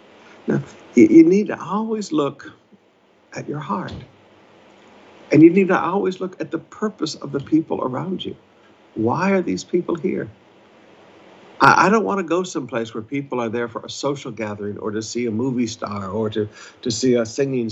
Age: 60-79